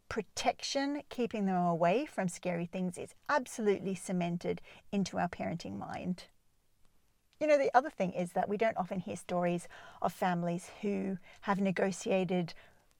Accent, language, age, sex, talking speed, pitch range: Australian, English, 40-59, female, 145 wpm, 175-225 Hz